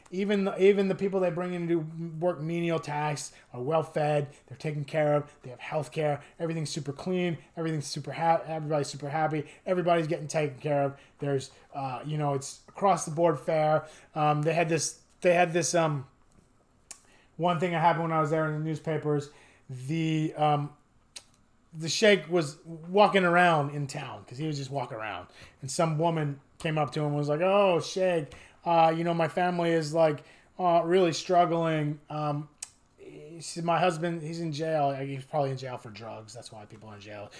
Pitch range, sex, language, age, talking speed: 145-175 Hz, male, English, 20-39, 190 wpm